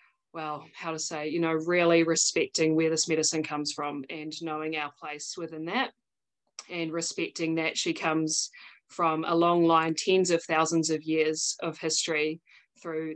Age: 20-39